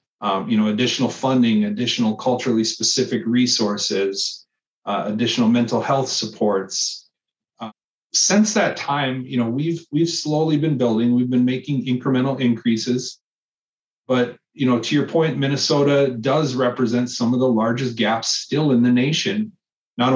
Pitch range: 115-140 Hz